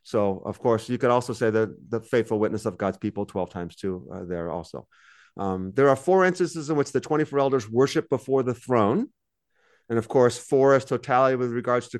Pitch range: 115-150 Hz